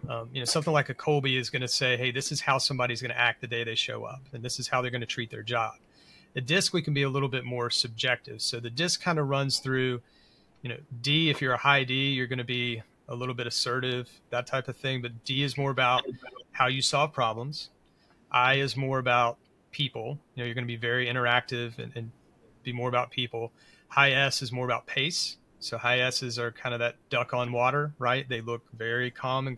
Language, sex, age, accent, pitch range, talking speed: English, male, 30-49, American, 120-140 Hz, 245 wpm